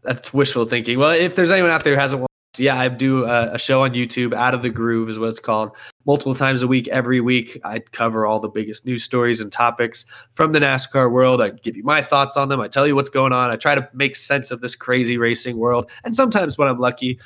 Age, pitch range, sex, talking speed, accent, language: 20-39, 120-140 Hz, male, 255 wpm, American, English